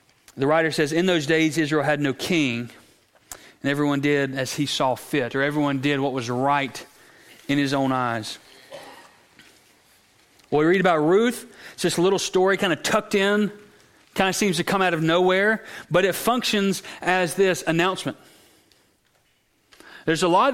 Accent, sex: American, male